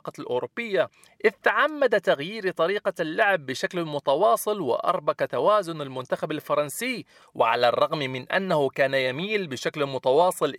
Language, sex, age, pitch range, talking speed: Arabic, male, 40-59, 135-210 Hz, 110 wpm